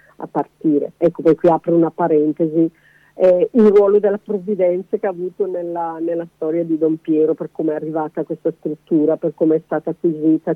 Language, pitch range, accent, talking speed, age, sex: Italian, 155-195 Hz, native, 190 wpm, 50-69, female